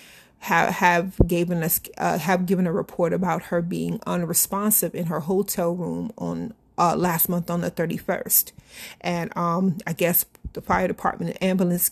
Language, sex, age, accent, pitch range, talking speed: English, female, 30-49, American, 170-190 Hz, 160 wpm